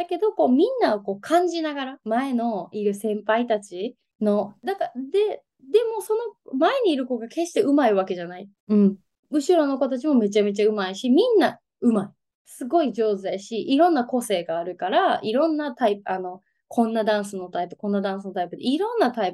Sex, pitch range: female, 200-315 Hz